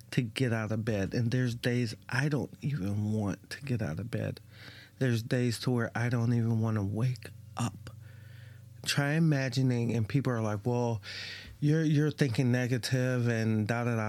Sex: male